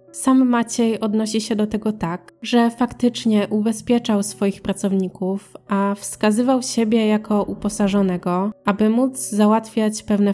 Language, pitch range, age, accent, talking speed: Polish, 195-225 Hz, 20-39, native, 120 wpm